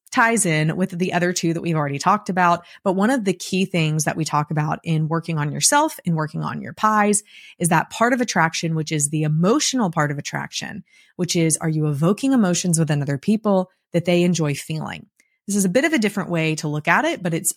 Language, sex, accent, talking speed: English, female, American, 235 wpm